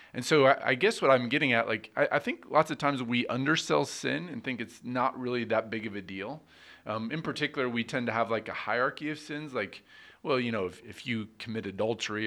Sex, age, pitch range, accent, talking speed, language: male, 30-49, 105-130 Hz, American, 235 wpm, English